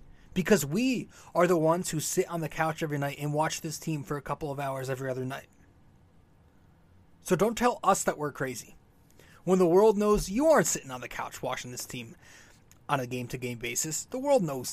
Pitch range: 120-180 Hz